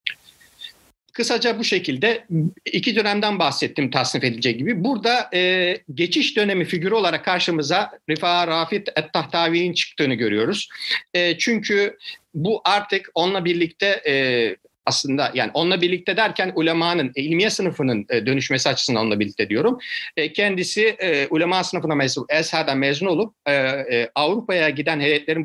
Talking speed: 125 wpm